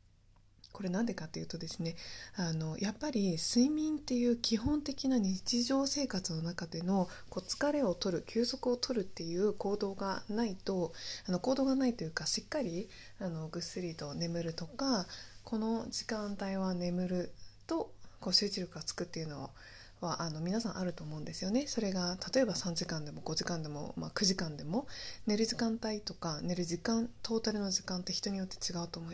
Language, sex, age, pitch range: Japanese, female, 20-39, 165-230 Hz